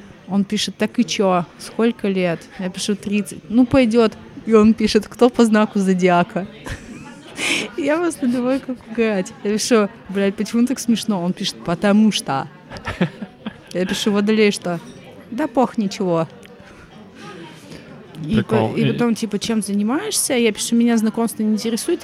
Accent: native